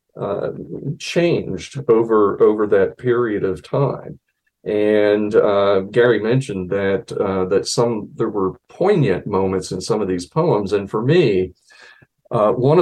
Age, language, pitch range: 50-69, English, 100-135 Hz